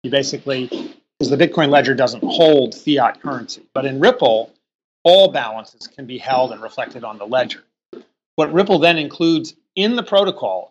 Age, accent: 40-59, American